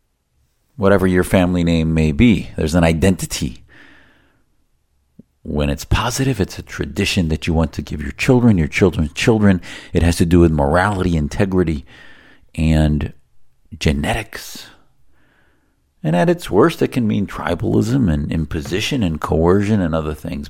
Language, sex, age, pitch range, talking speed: English, male, 50-69, 85-115 Hz, 145 wpm